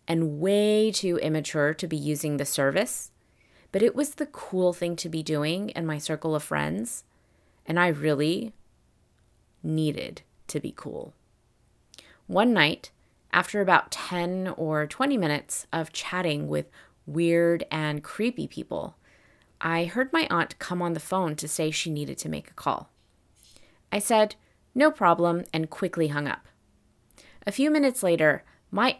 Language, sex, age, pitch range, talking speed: English, female, 20-39, 155-205 Hz, 155 wpm